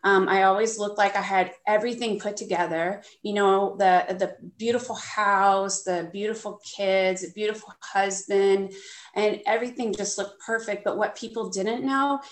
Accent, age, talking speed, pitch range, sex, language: American, 30-49, 150 wpm, 185-225 Hz, female, English